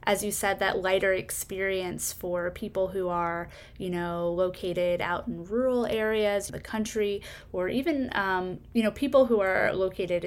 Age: 20-39